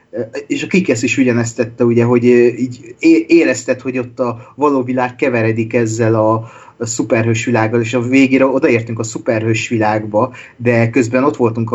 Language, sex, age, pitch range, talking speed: Hungarian, male, 30-49, 115-130 Hz, 165 wpm